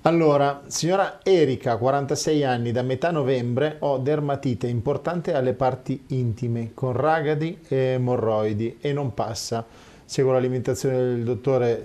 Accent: native